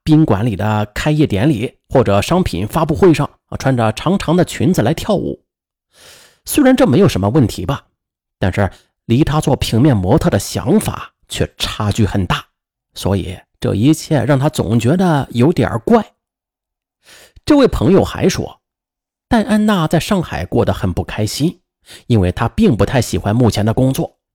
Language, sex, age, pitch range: Chinese, male, 30-49, 110-160 Hz